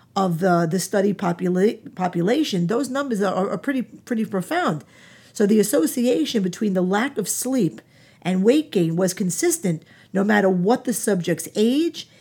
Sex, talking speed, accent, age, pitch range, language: female, 160 wpm, American, 50-69, 180-235 Hz, English